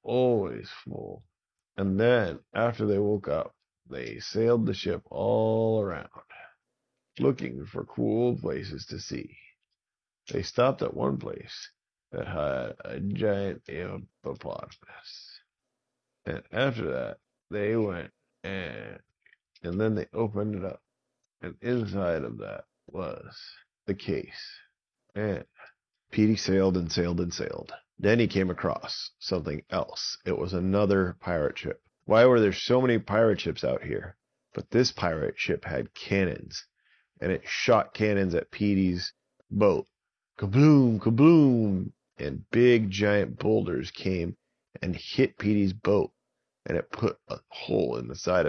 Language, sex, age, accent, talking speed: English, male, 50-69, American, 135 wpm